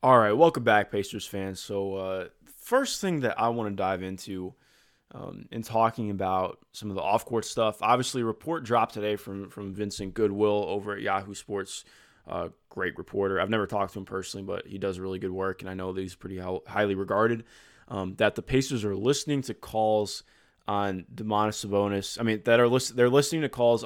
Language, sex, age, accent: English, male, 20-39, American